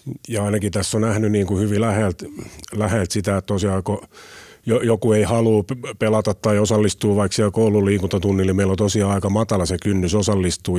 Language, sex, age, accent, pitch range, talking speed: Finnish, male, 30-49, native, 90-105 Hz, 170 wpm